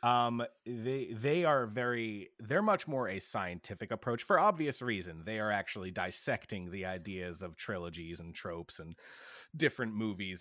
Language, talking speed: English, 155 wpm